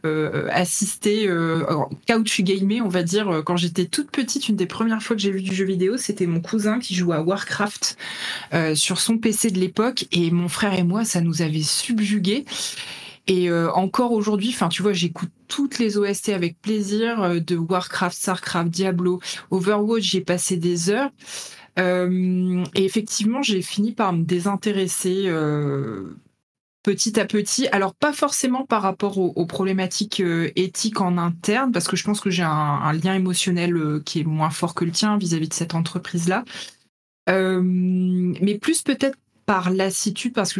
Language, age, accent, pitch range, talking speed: French, 20-39, French, 175-215 Hz, 180 wpm